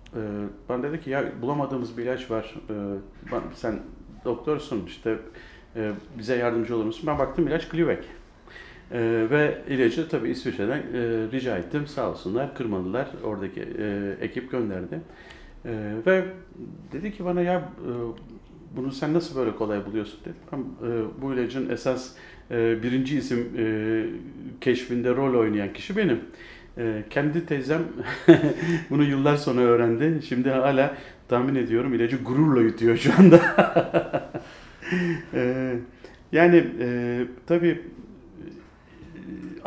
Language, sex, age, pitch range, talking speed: Turkish, male, 50-69, 110-140 Hz, 120 wpm